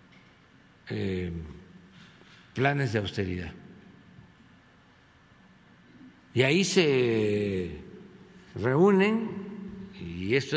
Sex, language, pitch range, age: male, Spanish, 105-165 Hz, 60-79